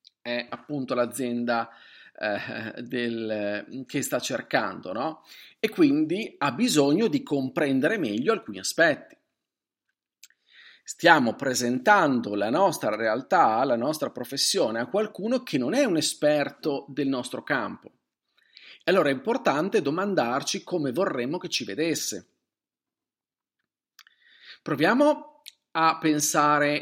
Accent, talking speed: native, 110 wpm